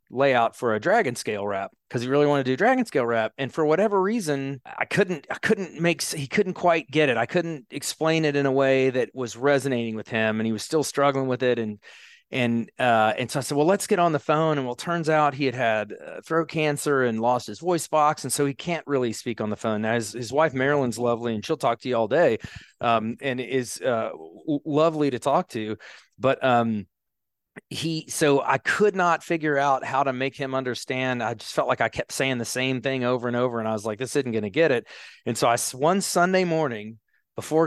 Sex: male